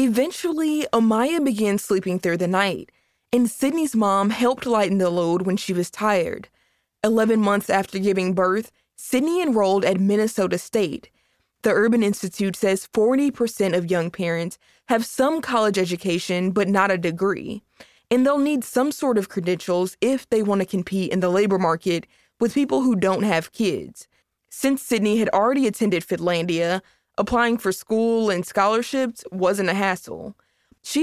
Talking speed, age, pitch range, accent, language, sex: 160 wpm, 20-39, 185-235 Hz, American, English, female